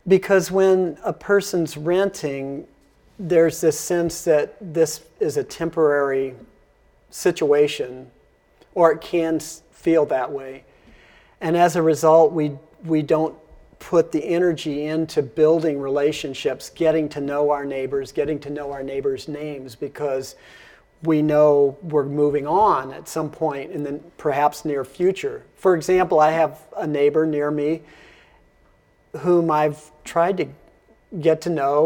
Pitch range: 145-170 Hz